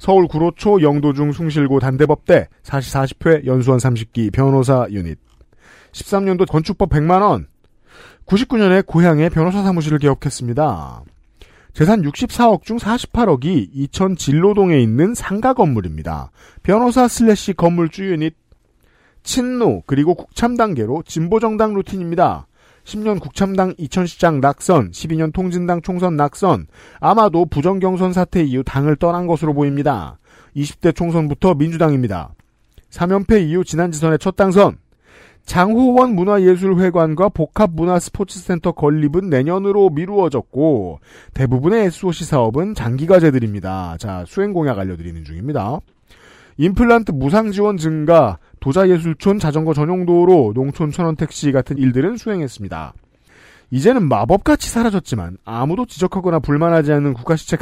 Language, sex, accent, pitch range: Korean, male, native, 135-185 Hz